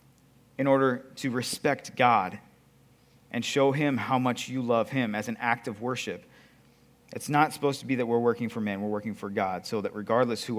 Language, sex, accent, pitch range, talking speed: English, male, American, 120-140 Hz, 205 wpm